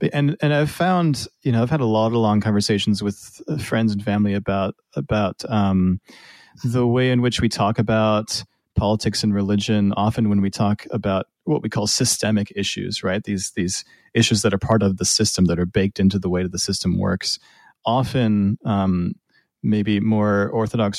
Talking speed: 185 wpm